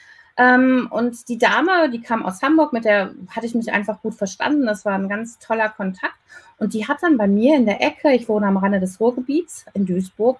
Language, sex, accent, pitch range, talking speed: German, female, German, 200-270 Hz, 220 wpm